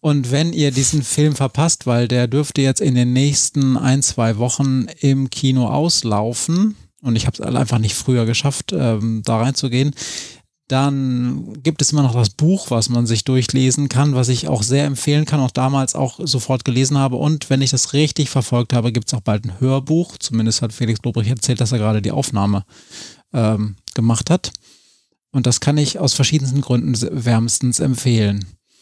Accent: German